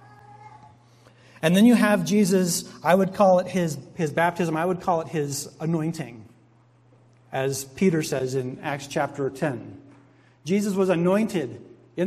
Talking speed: 145 wpm